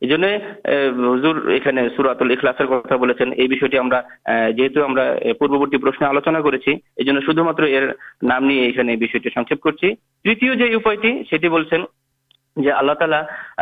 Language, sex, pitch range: Urdu, male, 135-185 Hz